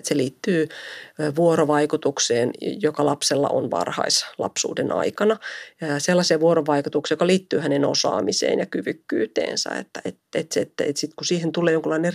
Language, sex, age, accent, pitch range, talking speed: Finnish, female, 40-59, native, 150-170 Hz, 135 wpm